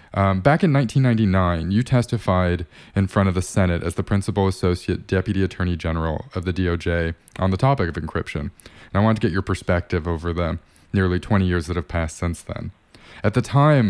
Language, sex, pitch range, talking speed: English, male, 90-105 Hz, 200 wpm